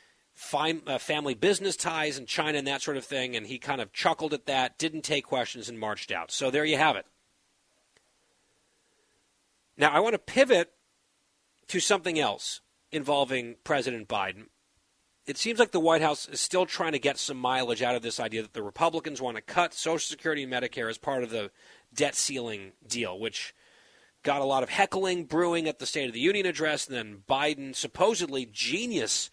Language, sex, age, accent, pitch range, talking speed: English, male, 40-59, American, 125-165 Hz, 190 wpm